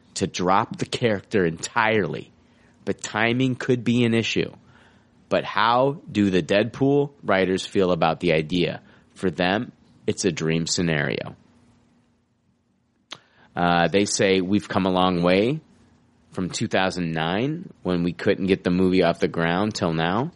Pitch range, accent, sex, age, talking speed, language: 90-125 Hz, American, male, 30-49, 140 wpm, English